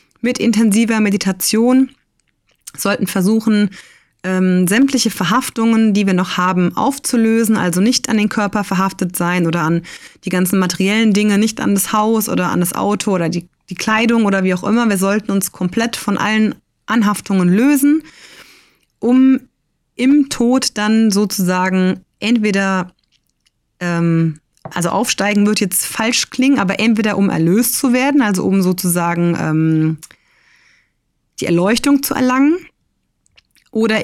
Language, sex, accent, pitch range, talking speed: German, female, German, 185-230 Hz, 135 wpm